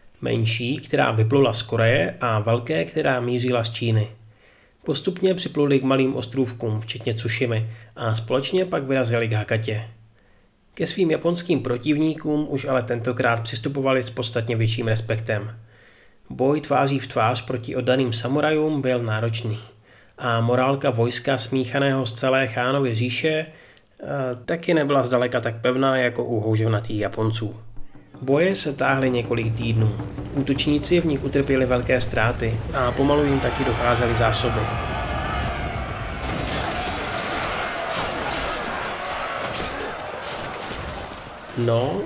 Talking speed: 115 wpm